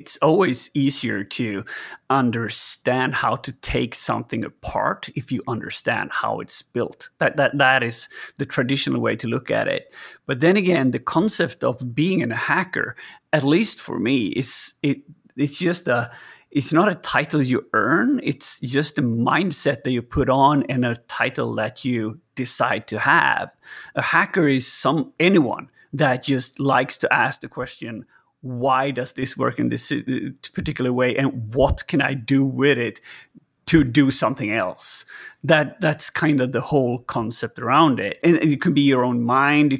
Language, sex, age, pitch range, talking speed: English, male, 30-49, 125-150 Hz, 175 wpm